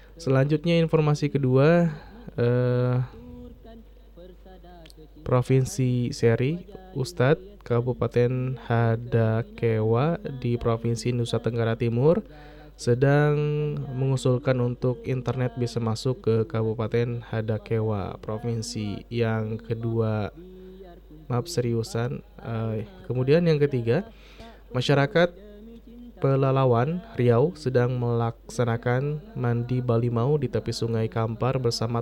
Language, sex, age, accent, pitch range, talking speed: Indonesian, male, 20-39, native, 115-155 Hz, 80 wpm